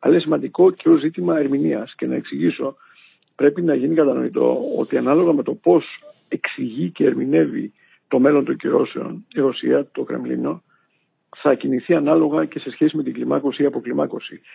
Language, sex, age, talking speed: Greek, male, 60-79, 165 wpm